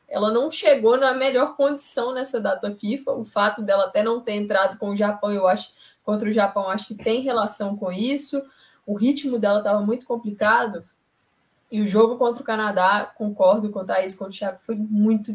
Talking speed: 205 wpm